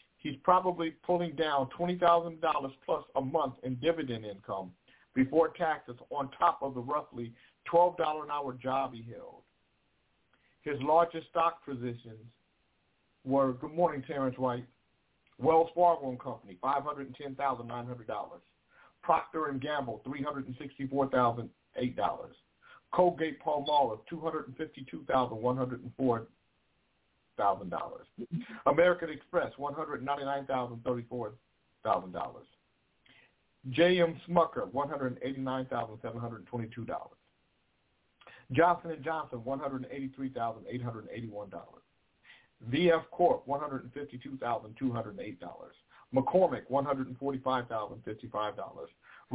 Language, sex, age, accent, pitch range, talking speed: English, male, 50-69, American, 120-150 Hz, 65 wpm